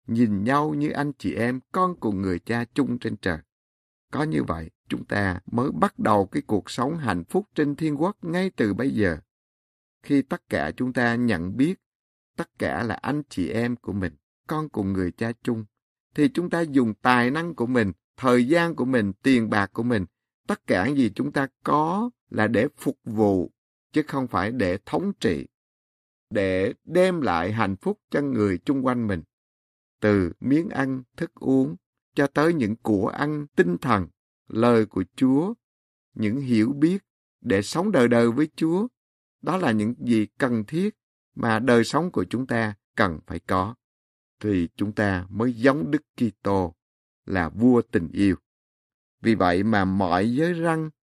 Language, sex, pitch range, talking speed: Vietnamese, male, 100-150 Hz, 180 wpm